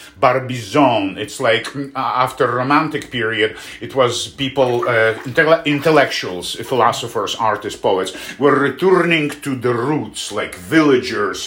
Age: 50-69